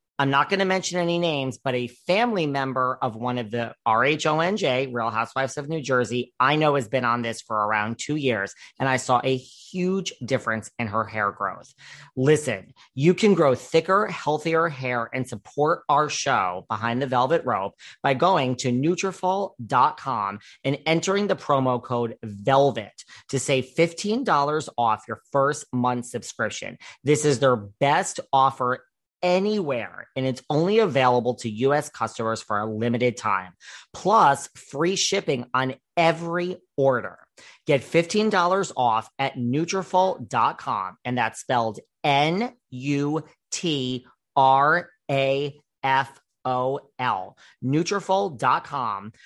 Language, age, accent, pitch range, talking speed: English, 40-59, American, 125-165 Hz, 140 wpm